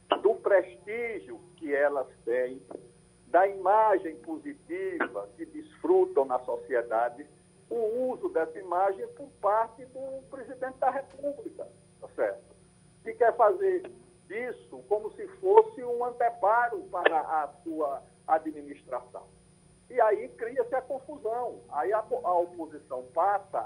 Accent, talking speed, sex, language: Brazilian, 115 wpm, male, Portuguese